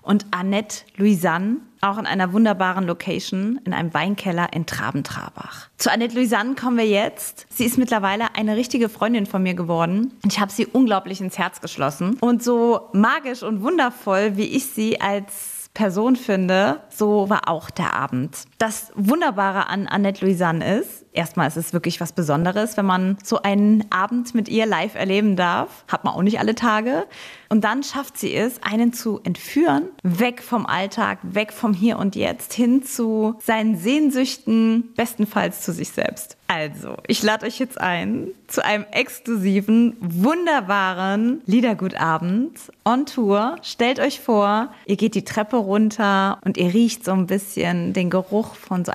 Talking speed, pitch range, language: 165 wpm, 185-230 Hz, German